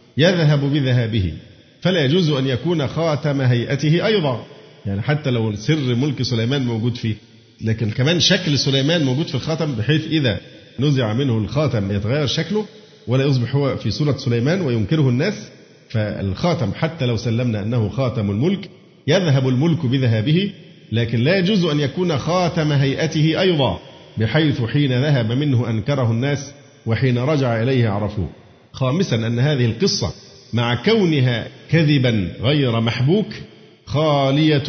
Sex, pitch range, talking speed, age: male, 115-155 Hz, 135 wpm, 50-69